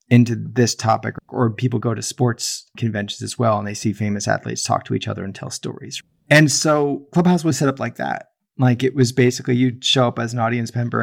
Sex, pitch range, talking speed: male, 115-135 Hz, 230 wpm